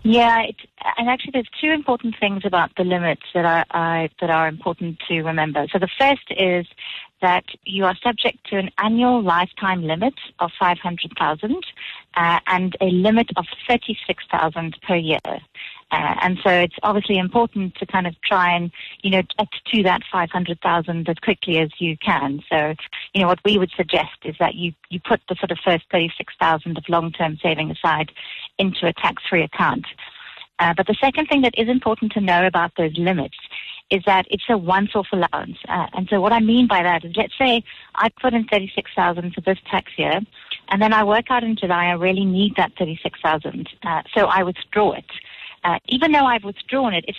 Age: 30-49